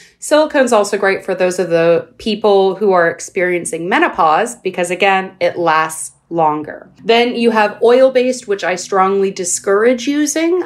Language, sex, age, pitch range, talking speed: English, female, 30-49, 175-235 Hz, 150 wpm